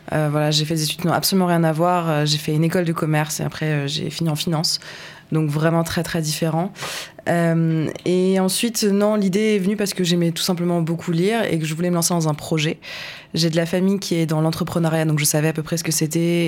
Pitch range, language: 155-175 Hz, French